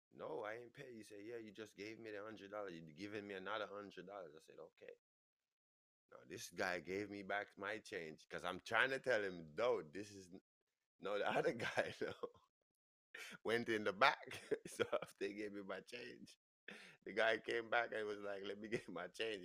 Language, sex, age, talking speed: English, male, 20-39, 200 wpm